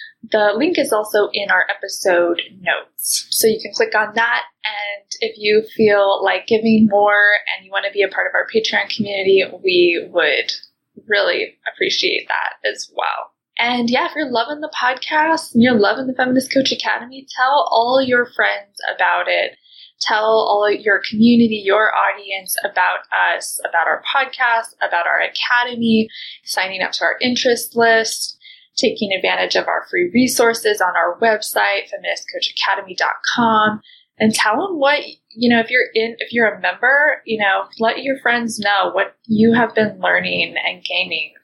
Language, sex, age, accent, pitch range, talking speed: English, female, 20-39, American, 210-270 Hz, 165 wpm